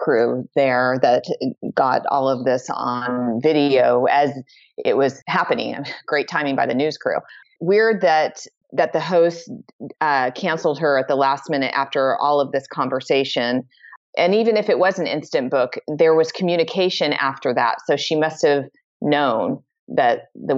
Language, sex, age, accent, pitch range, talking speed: English, female, 30-49, American, 135-170 Hz, 165 wpm